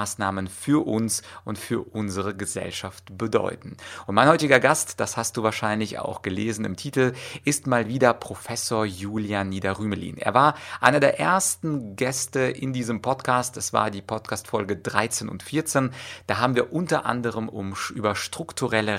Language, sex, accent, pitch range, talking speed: German, male, German, 105-130 Hz, 155 wpm